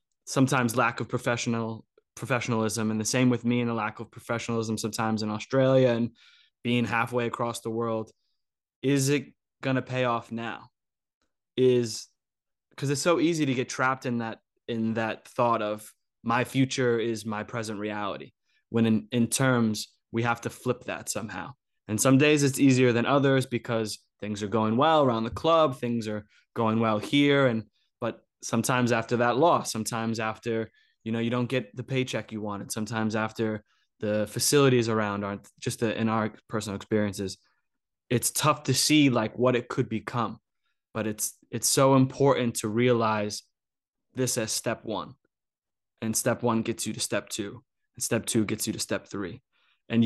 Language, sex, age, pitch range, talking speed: English, male, 20-39, 110-130 Hz, 175 wpm